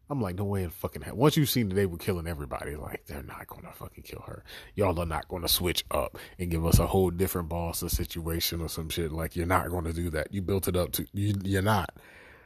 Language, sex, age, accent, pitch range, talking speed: English, male, 30-49, American, 90-120 Hz, 265 wpm